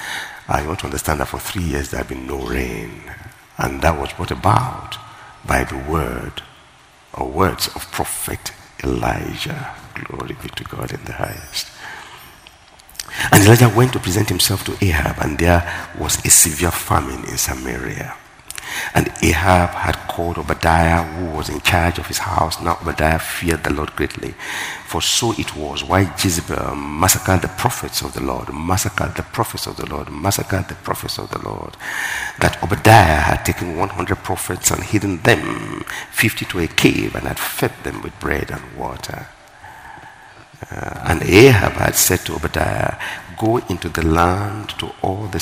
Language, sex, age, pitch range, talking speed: English, male, 60-79, 80-95 Hz, 170 wpm